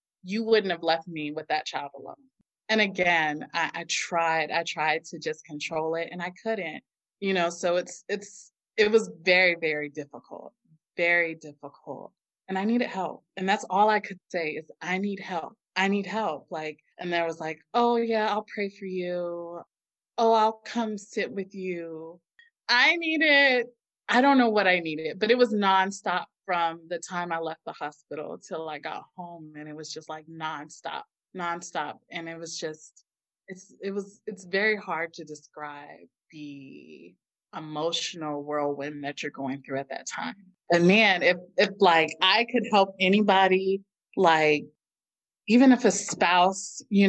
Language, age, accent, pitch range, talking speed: English, 20-39, American, 160-200 Hz, 175 wpm